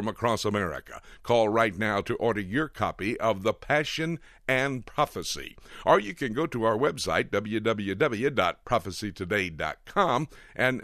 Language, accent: English, American